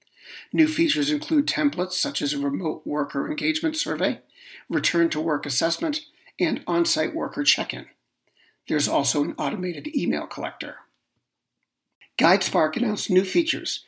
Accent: American